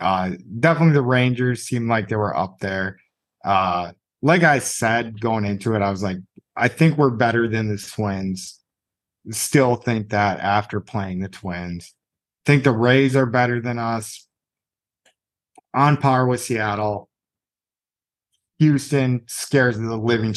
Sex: male